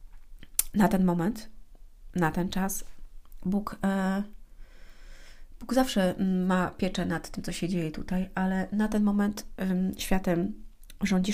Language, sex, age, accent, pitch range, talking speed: Polish, female, 30-49, native, 185-210 Hz, 120 wpm